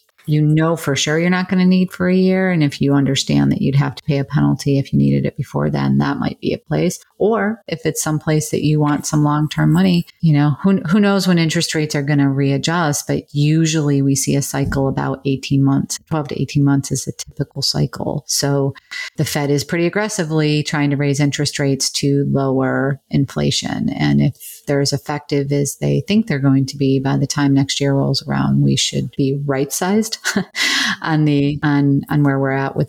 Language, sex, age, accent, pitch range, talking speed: English, female, 40-59, American, 140-170 Hz, 220 wpm